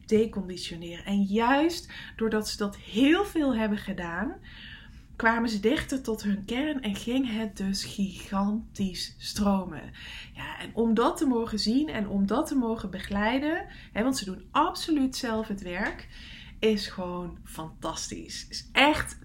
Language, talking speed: English, 150 wpm